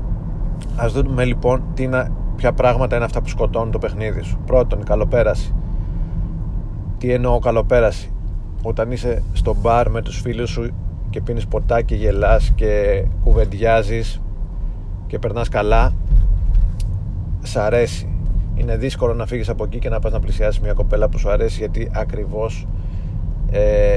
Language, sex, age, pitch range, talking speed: Greek, male, 30-49, 90-120 Hz, 145 wpm